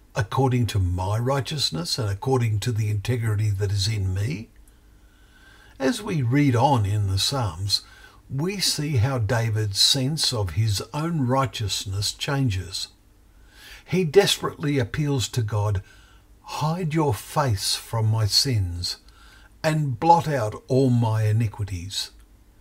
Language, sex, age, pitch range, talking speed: English, male, 60-79, 100-130 Hz, 125 wpm